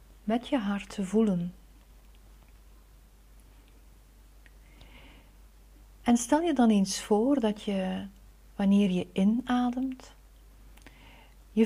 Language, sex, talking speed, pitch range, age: Dutch, female, 85 wpm, 180-225 Hz, 40-59